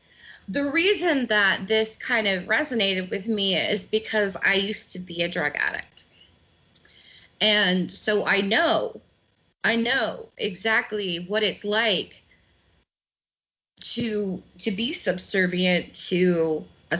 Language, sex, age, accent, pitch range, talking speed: English, female, 30-49, American, 180-225 Hz, 120 wpm